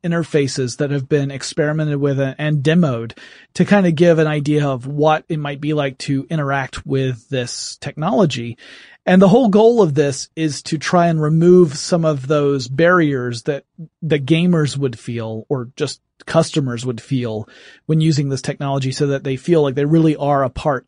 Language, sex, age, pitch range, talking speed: English, male, 30-49, 135-160 Hz, 185 wpm